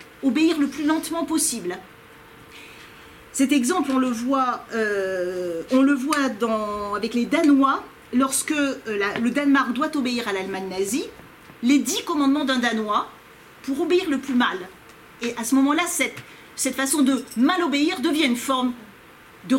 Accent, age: French, 40-59